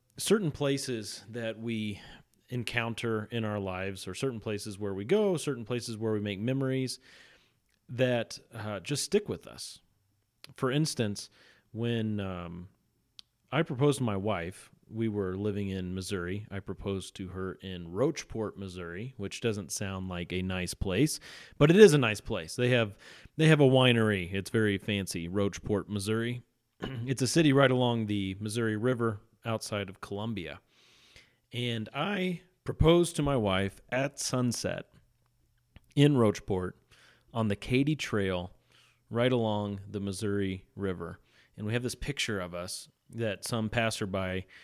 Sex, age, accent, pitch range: male, 30-49, American, 100-125 Hz